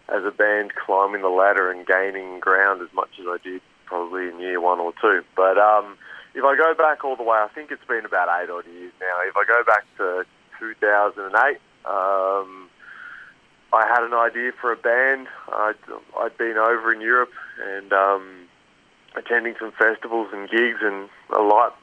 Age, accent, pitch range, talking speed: 30-49, Australian, 105-120 Hz, 185 wpm